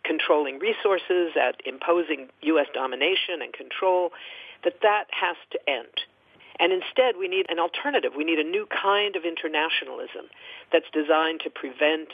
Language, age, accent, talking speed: English, 50-69, American, 150 wpm